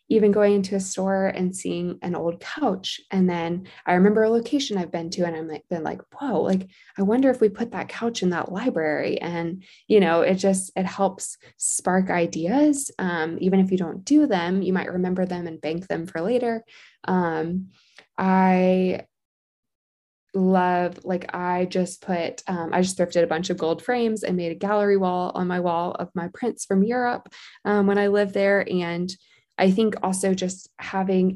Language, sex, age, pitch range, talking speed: English, female, 20-39, 170-200 Hz, 195 wpm